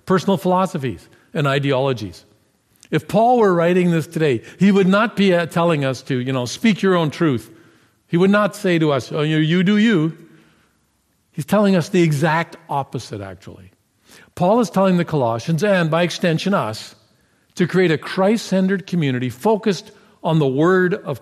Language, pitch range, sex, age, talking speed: English, 125-180 Hz, male, 50-69, 165 wpm